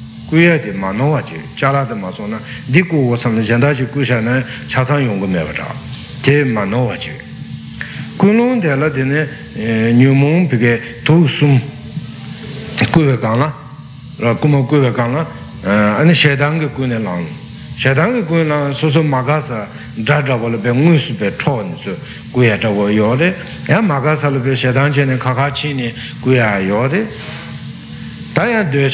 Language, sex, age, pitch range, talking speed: Italian, male, 60-79, 115-145 Hz, 50 wpm